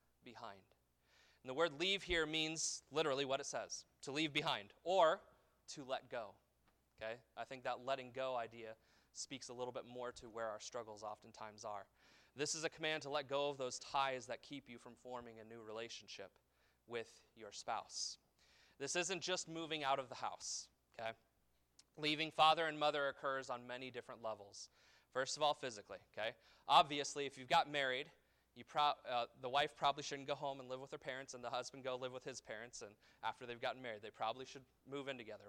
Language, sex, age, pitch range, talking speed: English, male, 30-49, 120-155 Hz, 200 wpm